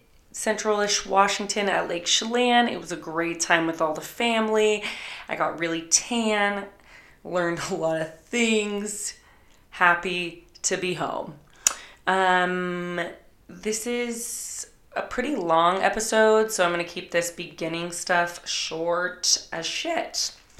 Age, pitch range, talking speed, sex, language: 20-39, 170-205 Hz, 130 wpm, female, English